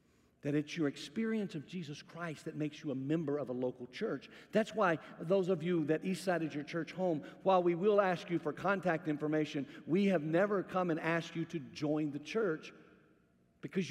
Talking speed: 205 wpm